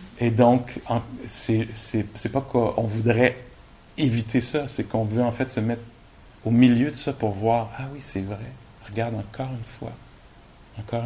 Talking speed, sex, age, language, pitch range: 175 wpm, male, 50-69, English, 110-120 Hz